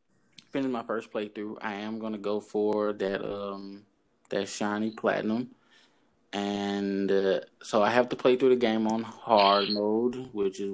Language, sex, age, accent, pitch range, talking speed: English, male, 20-39, American, 105-130 Hz, 155 wpm